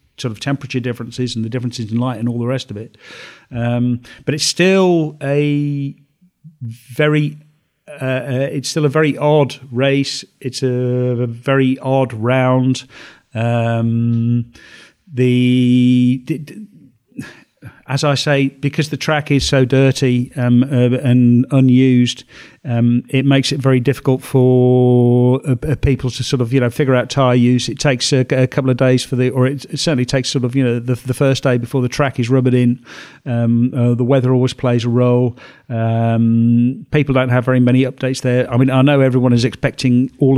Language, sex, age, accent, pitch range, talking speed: English, male, 40-59, British, 120-135 Hz, 175 wpm